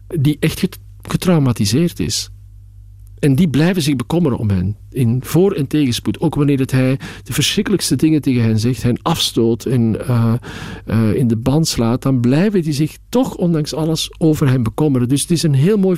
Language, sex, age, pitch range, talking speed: Dutch, male, 50-69, 120-160 Hz, 190 wpm